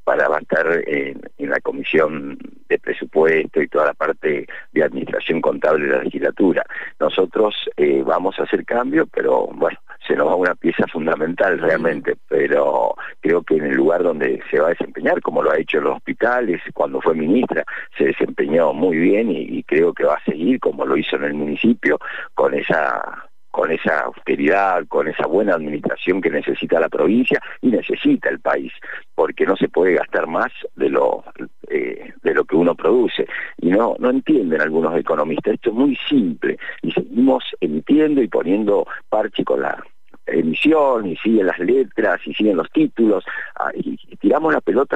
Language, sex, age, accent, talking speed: Spanish, male, 50-69, Argentinian, 180 wpm